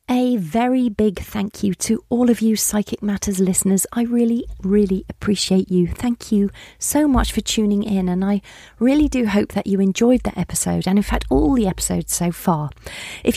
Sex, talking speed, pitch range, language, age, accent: female, 195 wpm, 180-225 Hz, English, 40-59, British